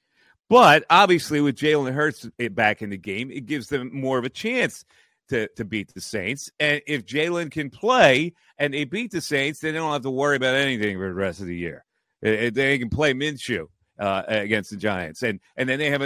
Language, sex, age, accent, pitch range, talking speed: English, male, 40-59, American, 120-175 Hz, 215 wpm